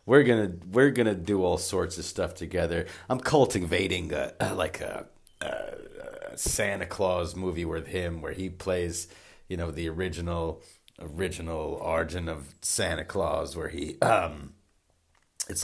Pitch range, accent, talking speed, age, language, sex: 80-100 Hz, American, 160 wpm, 30-49, English, male